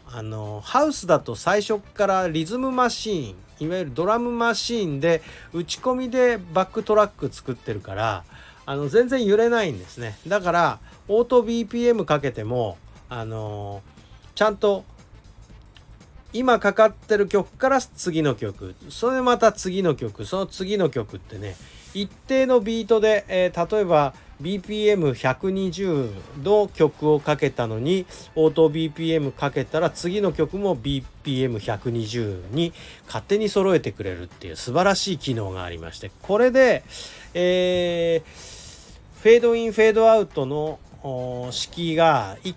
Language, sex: Japanese, male